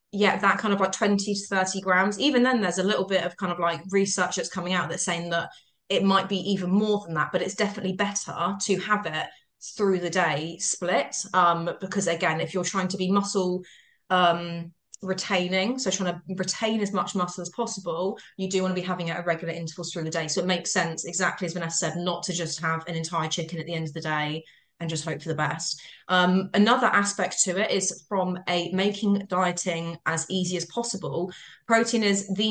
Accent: British